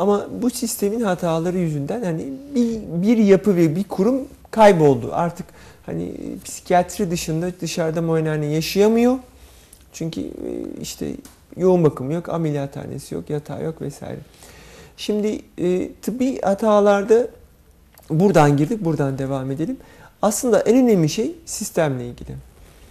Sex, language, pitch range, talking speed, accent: male, Turkish, 140-205 Hz, 120 wpm, native